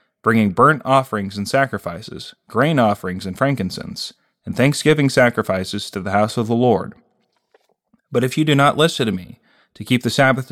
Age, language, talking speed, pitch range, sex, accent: 30-49, English, 170 wpm, 105-140 Hz, male, American